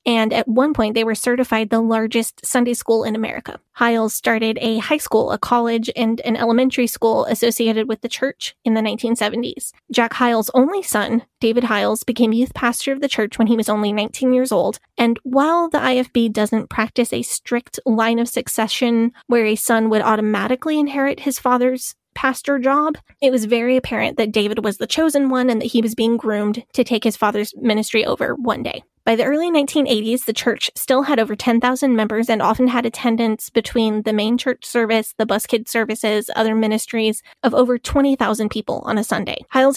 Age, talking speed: 20-39, 195 wpm